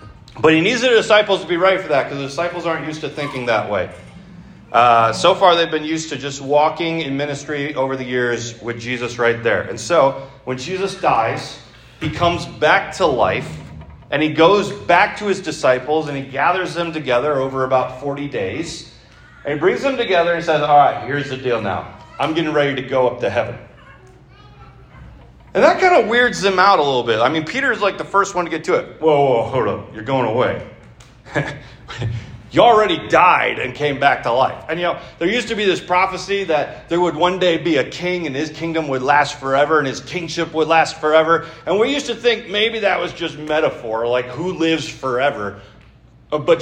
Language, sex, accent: English, male, American